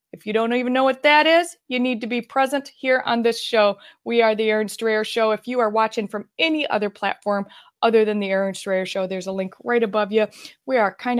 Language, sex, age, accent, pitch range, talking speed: English, female, 20-39, American, 195-240 Hz, 245 wpm